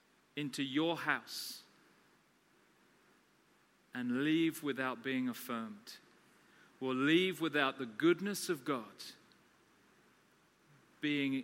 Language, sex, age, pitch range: English, male, 40-59, 135-180 Hz